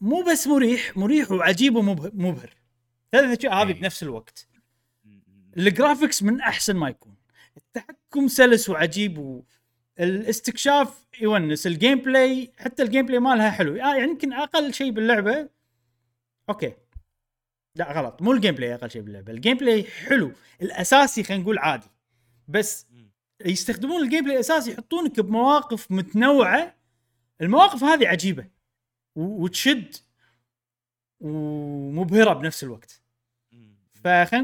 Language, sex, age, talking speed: Arabic, male, 30-49, 115 wpm